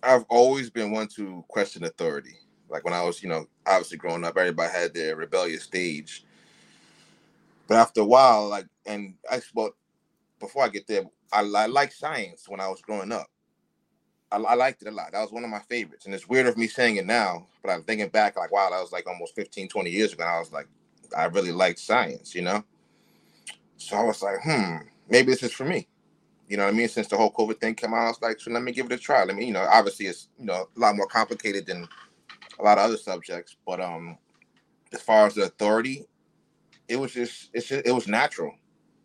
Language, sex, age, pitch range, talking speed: English, male, 30-49, 105-125 Hz, 230 wpm